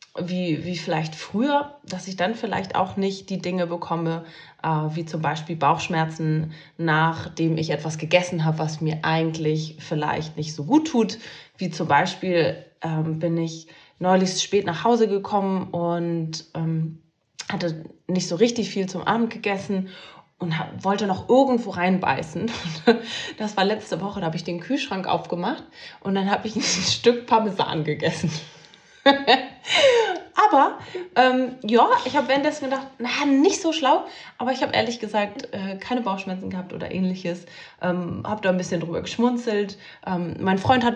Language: German